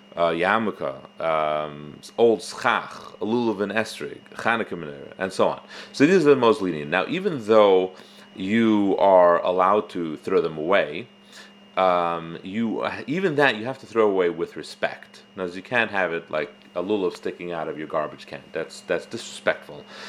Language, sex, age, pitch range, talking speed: English, male, 40-59, 90-115 Hz, 165 wpm